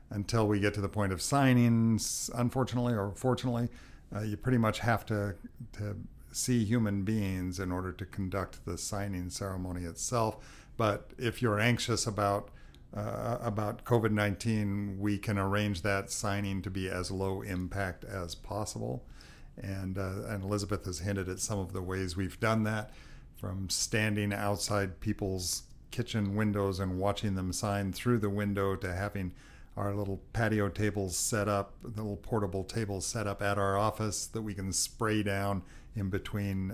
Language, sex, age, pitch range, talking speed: English, male, 50-69, 95-115 Hz, 165 wpm